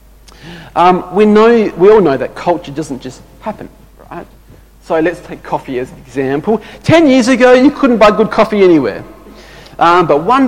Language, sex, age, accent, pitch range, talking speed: English, male, 40-59, Australian, 145-230 Hz, 180 wpm